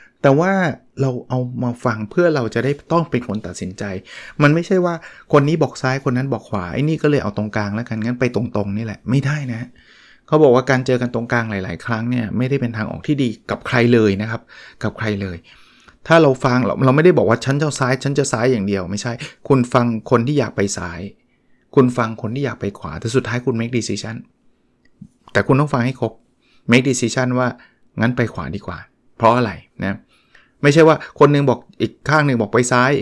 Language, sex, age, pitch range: Thai, male, 20-39, 105-135 Hz